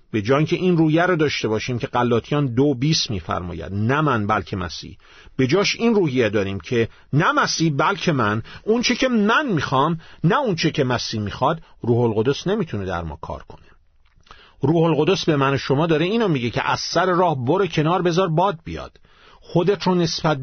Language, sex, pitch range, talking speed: Persian, male, 125-180 Hz, 180 wpm